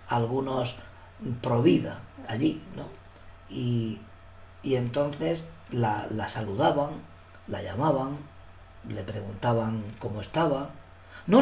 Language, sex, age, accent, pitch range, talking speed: Spanish, female, 40-59, Spanish, 95-145 Hz, 90 wpm